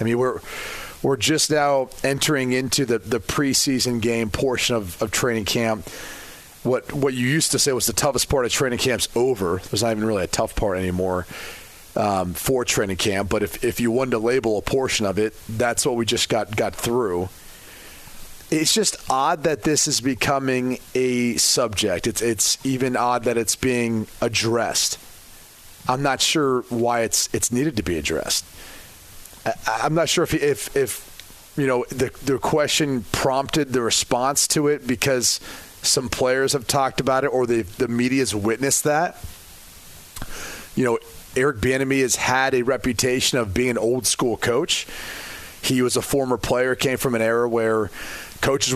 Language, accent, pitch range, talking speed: English, American, 110-135 Hz, 175 wpm